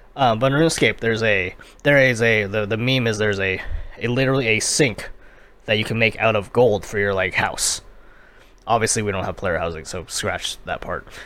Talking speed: 215 wpm